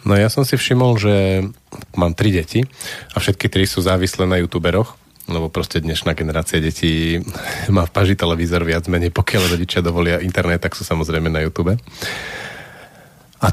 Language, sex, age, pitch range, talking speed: Slovak, male, 40-59, 90-115 Hz, 170 wpm